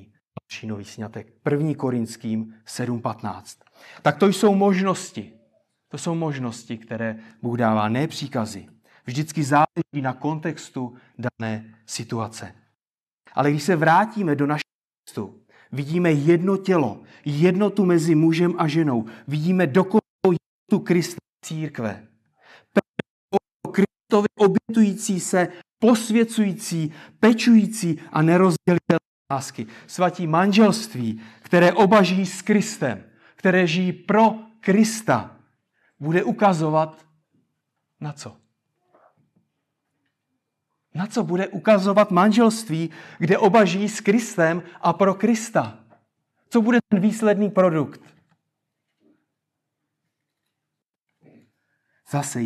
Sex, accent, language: male, native, Czech